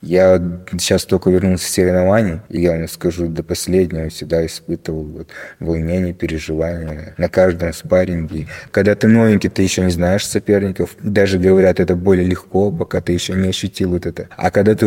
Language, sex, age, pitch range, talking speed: Russian, male, 20-39, 85-100 Hz, 175 wpm